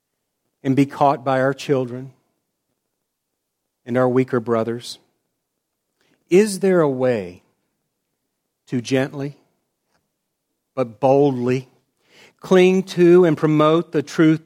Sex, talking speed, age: male, 100 wpm, 40-59